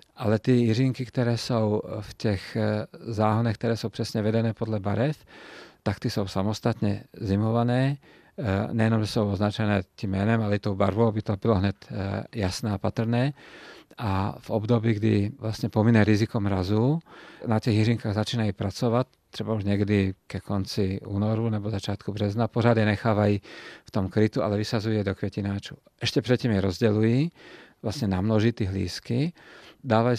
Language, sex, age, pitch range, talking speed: Czech, male, 40-59, 100-115 Hz, 155 wpm